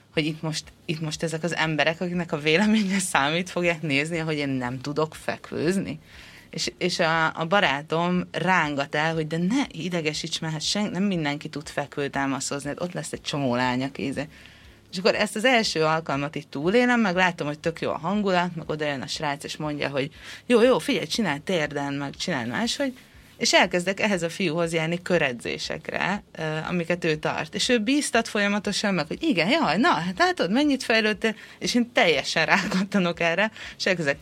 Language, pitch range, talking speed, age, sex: Hungarian, 150-205 Hz, 180 wpm, 30-49, female